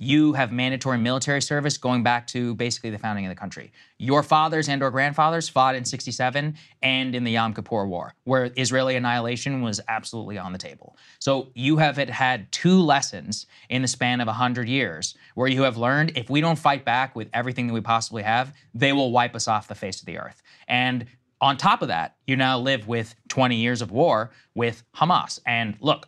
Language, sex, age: English, male, 20-39